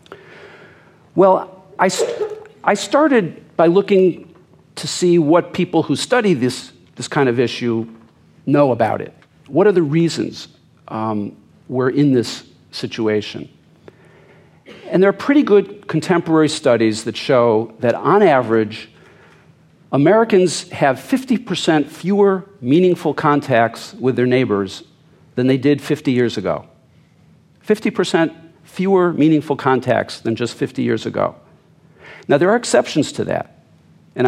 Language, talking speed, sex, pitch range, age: English, 130 wpm, male, 125-175 Hz, 50-69